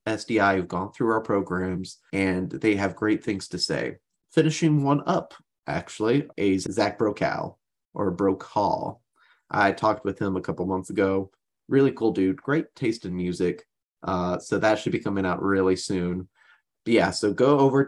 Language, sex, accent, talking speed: English, male, American, 170 wpm